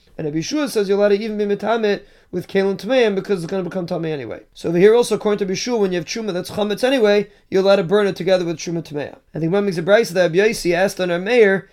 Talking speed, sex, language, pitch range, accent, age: 280 wpm, male, English, 170-205 Hz, American, 20-39